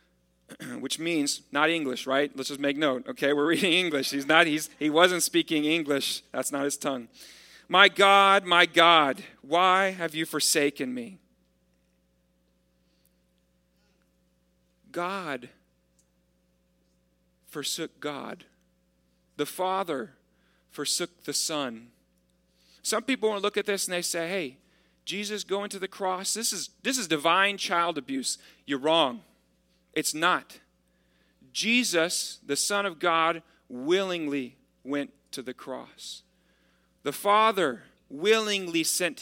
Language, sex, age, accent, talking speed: English, male, 40-59, American, 125 wpm